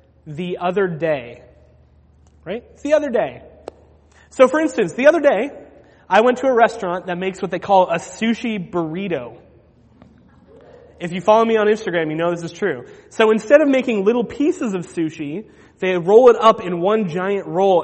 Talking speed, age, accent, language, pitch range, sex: 180 wpm, 30-49, American, English, 165-225 Hz, male